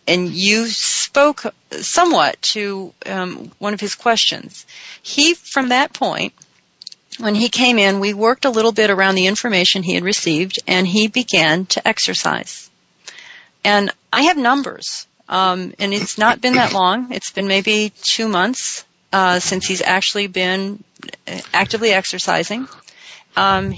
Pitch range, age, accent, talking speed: 190-240 Hz, 40-59, American, 145 wpm